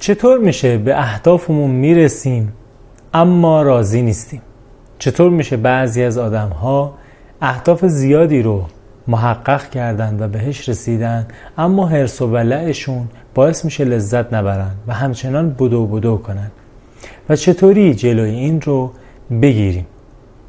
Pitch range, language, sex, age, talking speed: 110-145 Hz, Persian, male, 30-49, 115 wpm